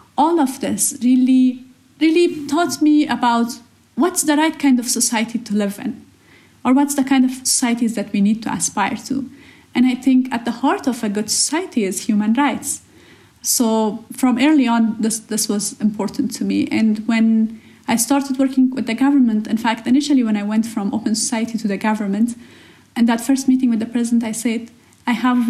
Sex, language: female, English